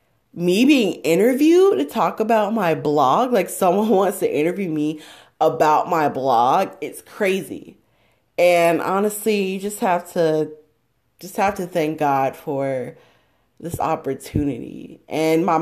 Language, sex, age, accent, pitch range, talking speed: English, female, 20-39, American, 155-200 Hz, 135 wpm